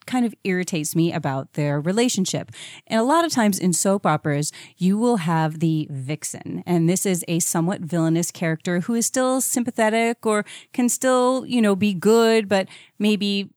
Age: 30-49